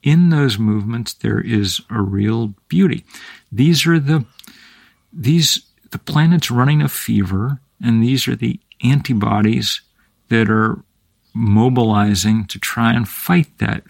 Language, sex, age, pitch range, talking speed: English, male, 50-69, 110-145 Hz, 130 wpm